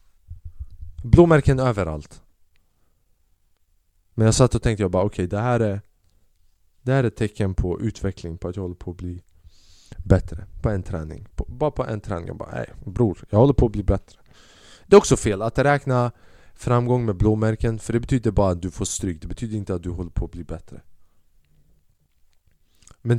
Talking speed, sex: 185 wpm, male